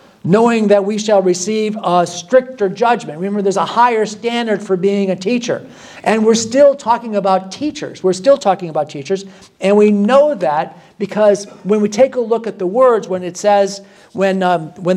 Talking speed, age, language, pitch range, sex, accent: 190 wpm, 50-69, English, 175-215 Hz, male, American